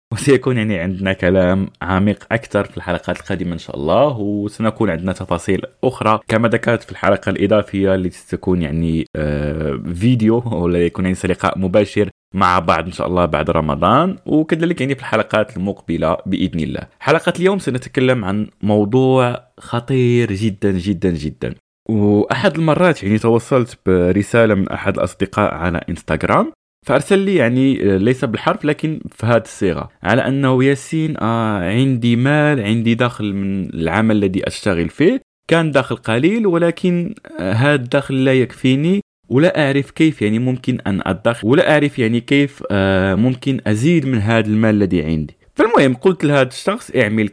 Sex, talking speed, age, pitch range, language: male, 150 wpm, 20-39, 95-140 Hz, Arabic